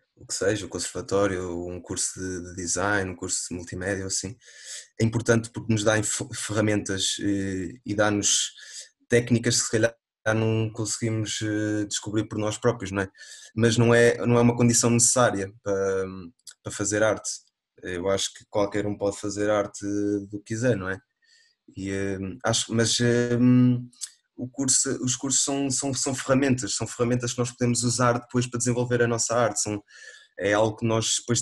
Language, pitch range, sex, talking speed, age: Portuguese, 100-120 Hz, male, 170 wpm, 20-39